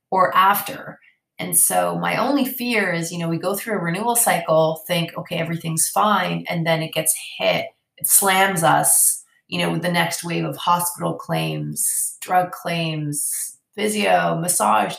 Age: 30-49